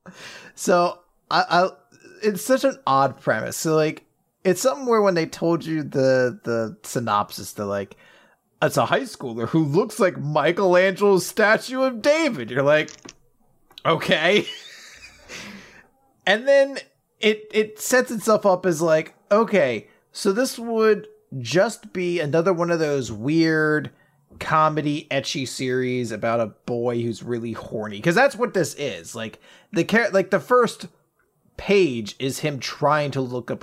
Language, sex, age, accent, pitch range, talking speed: English, male, 30-49, American, 130-195 Hz, 145 wpm